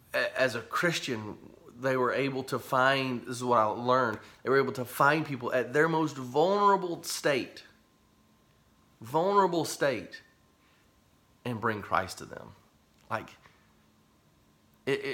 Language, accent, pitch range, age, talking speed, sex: English, American, 110-140 Hz, 30-49, 130 wpm, male